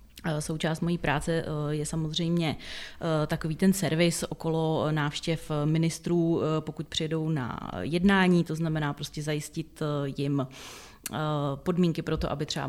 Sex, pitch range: female, 155-170 Hz